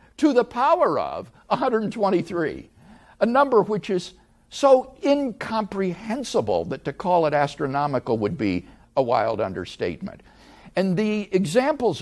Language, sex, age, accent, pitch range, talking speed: English, male, 50-69, American, 125-205 Hz, 120 wpm